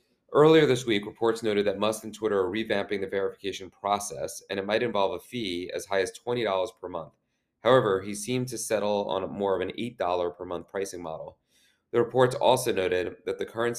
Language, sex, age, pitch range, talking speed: English, male, 30-49, 95-115 Hz, 205 wpm